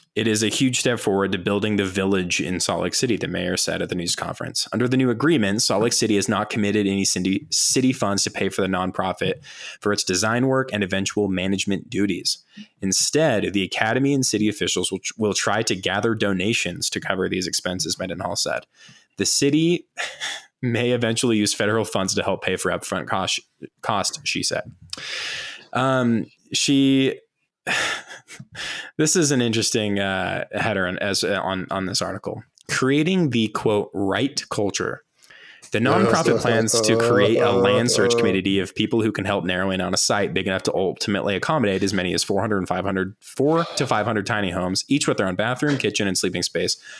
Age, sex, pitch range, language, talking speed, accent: 20-39, male, 95-125 Hz, English, 185 wpm, American